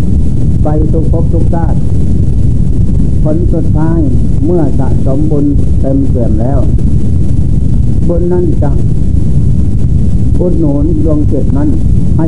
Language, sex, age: Thai, male, 60-79